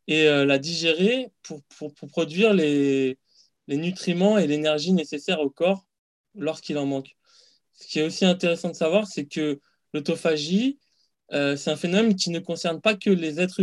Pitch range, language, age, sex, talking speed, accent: 140-185 Hz, French, 20-39, male, 170 wpm, French